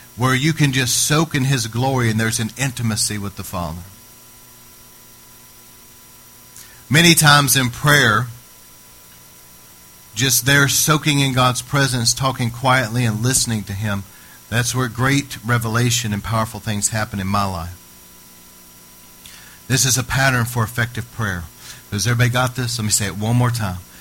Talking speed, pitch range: 150 wpm, 100-125 Hz